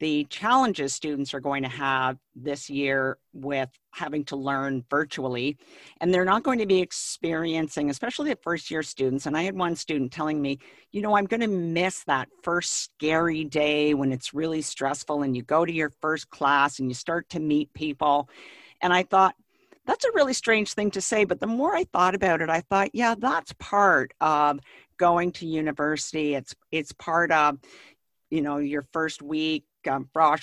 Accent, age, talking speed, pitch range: American, 50-69, 190 wpm, 140-180 Hz